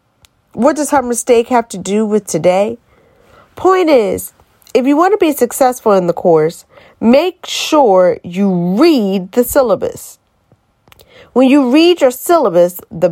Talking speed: 145 wpm